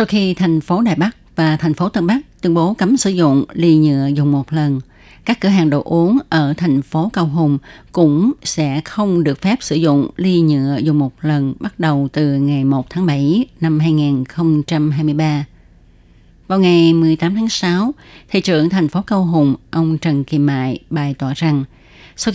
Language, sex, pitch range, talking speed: Vietnamese, female, 145-180 Hz, 190 wpm